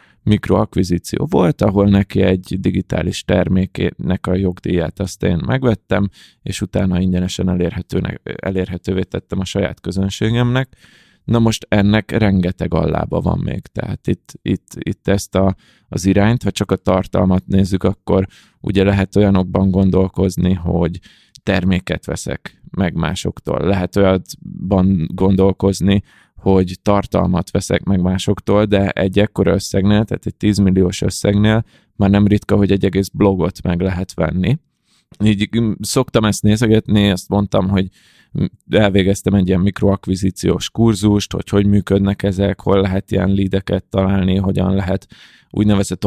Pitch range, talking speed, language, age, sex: 95-100 Hz, 130 wpm, Hungarian, 20-39, male